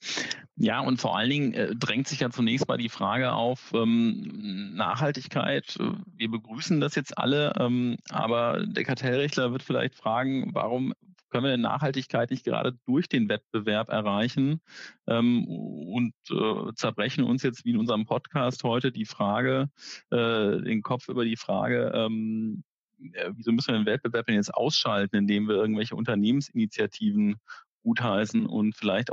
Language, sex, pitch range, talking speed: German, male, 110-135 Hz, 150 wpm